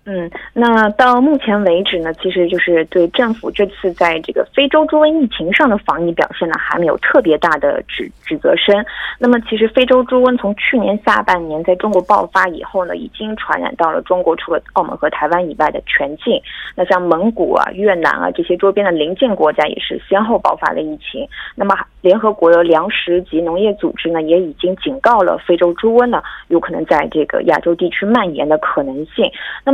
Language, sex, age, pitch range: Korean, female, 20-39, 170-225 Hz